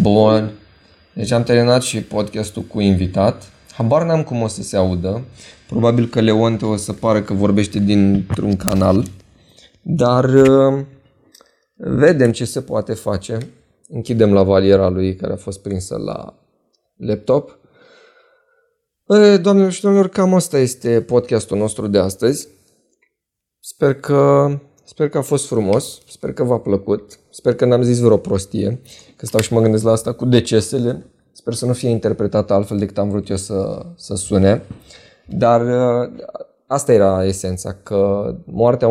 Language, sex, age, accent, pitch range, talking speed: Romanian, male, 20-39, native, 100-135 Hz, 150 wpm